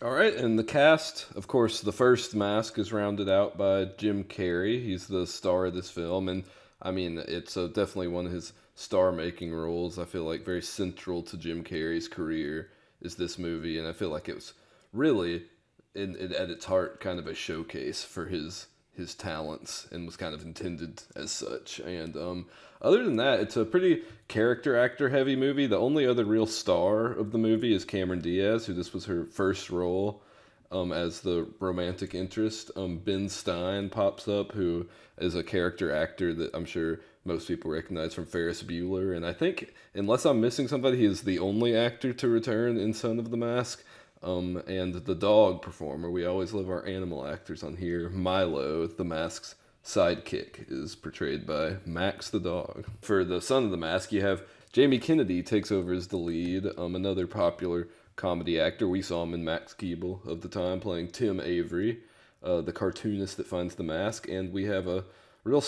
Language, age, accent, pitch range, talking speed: English, 20-39, American, 85-105 Hz, 195 wpm